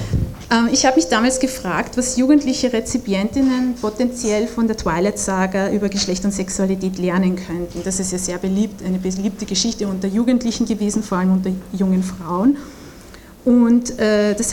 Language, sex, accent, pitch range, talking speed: German, female, Austrian, 195-235 Hz, 150 wpm